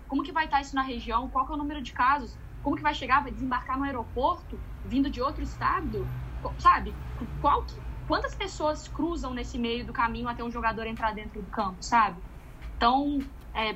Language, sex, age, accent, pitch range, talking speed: Portuguese, female, 10-29, Brazilian, 230-305 Hz, 205 wpm